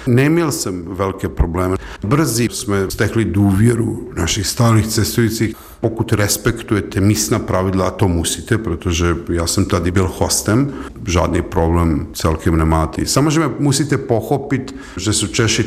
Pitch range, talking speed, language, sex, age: 90-110 Hz, 135 wpm, Czech, male, 50-69